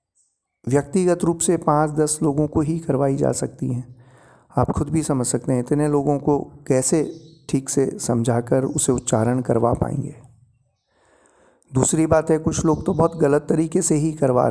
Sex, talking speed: male, 170 wpm